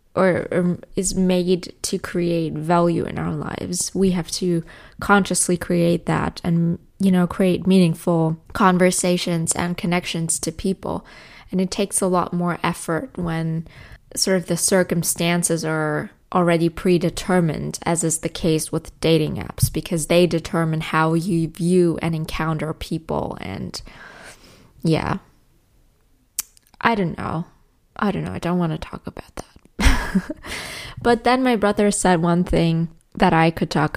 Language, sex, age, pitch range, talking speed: English, female, 20-39, 160-190 Hz, 145 wpm